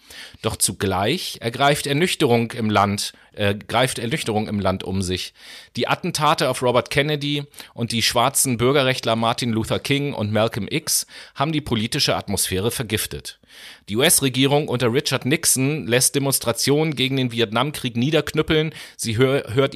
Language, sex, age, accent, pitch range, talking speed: German, male, 30-49, German, 110-145 Hz, 145 wpm